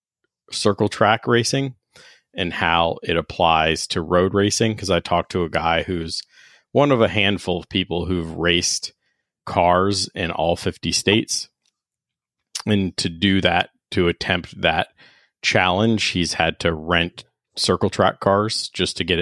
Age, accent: 30-49, American